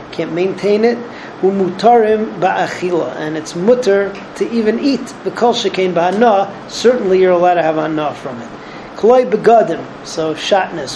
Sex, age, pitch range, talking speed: male, 40-59, 180-215 Hz, 130 wpm